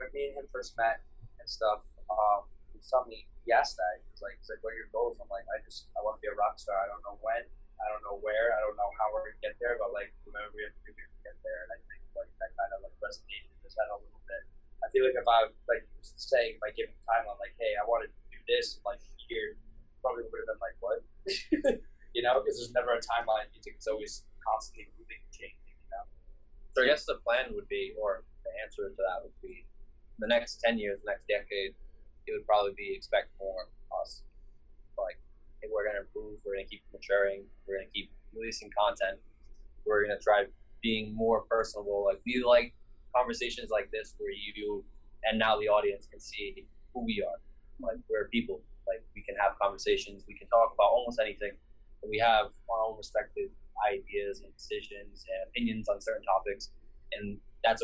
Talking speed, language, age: 220 wpm, English, 20-39